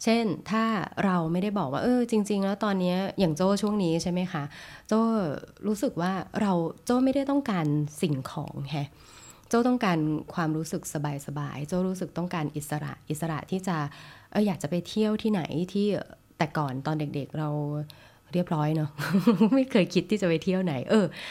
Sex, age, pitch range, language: female, 20-39, 145-185 Hz, Thai